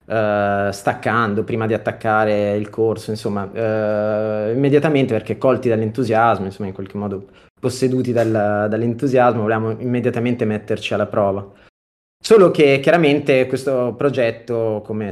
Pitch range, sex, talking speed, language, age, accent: 105-130 Hz, male, 110 wpm, Italian, 30-49, native